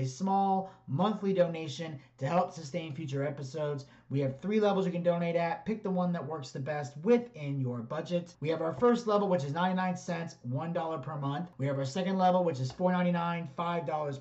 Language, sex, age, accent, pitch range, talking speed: English, male, 30-49, American, 150-190 Hz, 210 wpm